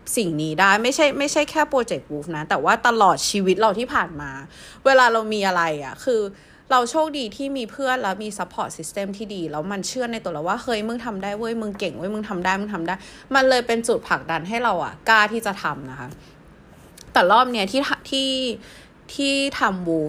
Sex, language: female, Thai